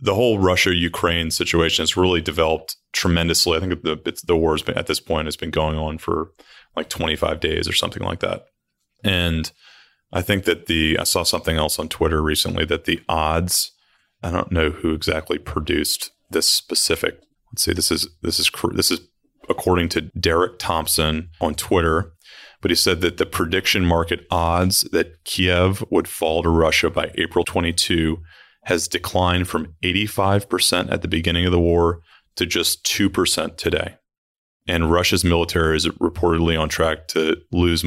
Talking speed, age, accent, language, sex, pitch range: 170 wpm, 30-49, American, English, male, 80-90 Hz